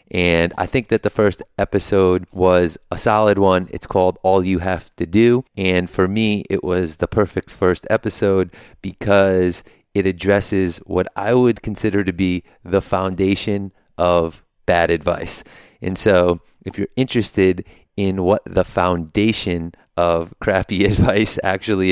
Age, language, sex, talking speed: 30-49, English, male, 150 wpm